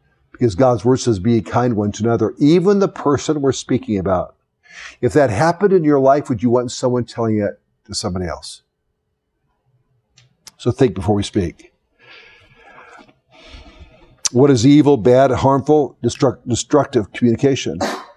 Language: English